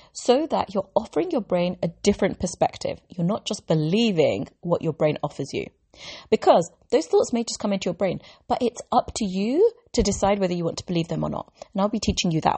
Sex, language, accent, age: female, English, British, 30-49